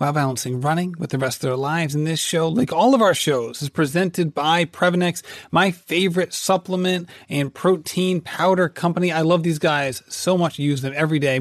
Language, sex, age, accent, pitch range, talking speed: English, male, 30-49, American, 145-180 Hz, 205 wpm